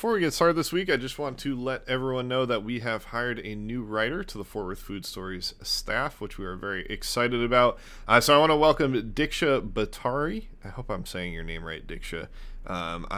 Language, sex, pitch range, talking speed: English, male, 105-140 Hz, 230 wpm